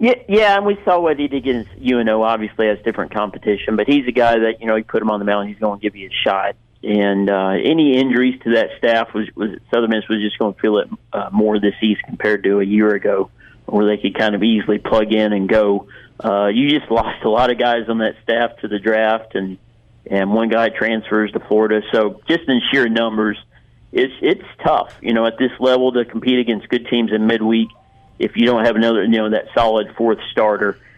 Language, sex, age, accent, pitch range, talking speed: English, male, 40-59, American, 105-120 Hz, 235 wpm